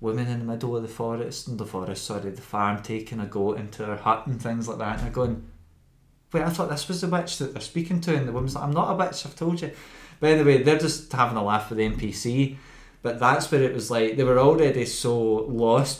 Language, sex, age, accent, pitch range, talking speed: English, male, 20-39, British, 110-135 Hz, 265 wpm